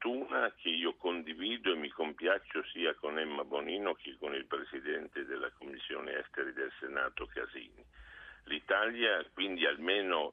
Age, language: 60-79, Italian